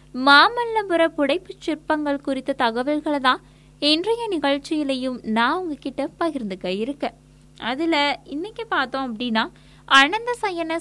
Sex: female